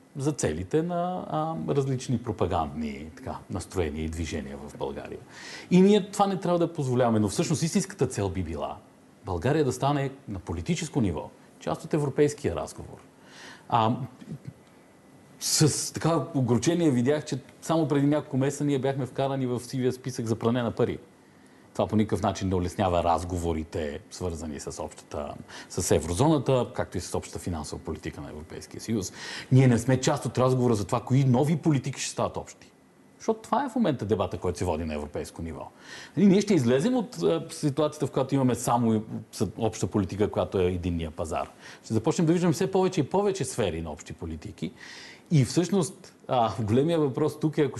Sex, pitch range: male, 105-155 Hz